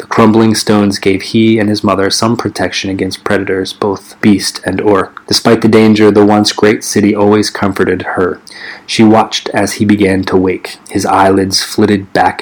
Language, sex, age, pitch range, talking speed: English, male, 30-49, 95-105 Hz, 175 wpm